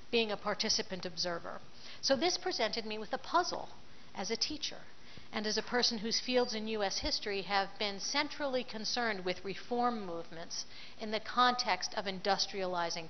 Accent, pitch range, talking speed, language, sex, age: American, 180-230 Hz, 160 wpm, English, female, 50-69